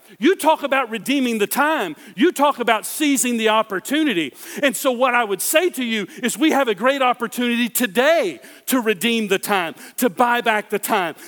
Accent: American